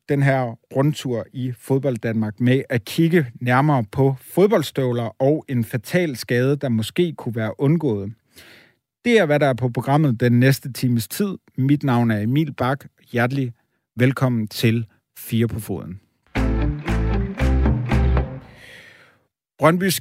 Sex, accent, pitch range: male, native, 120-145 Hz